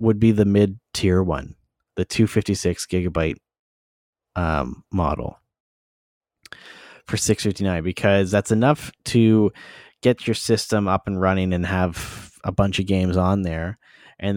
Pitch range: 90-110 Hz